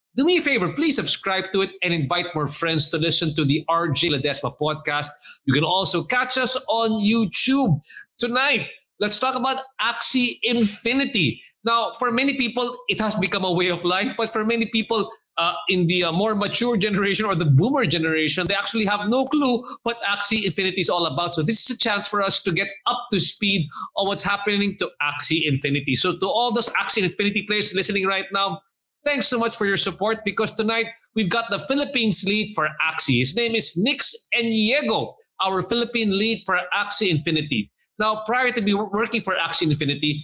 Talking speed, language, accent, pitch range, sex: 195 wpm, English, Filipino, 170-225 Hz, male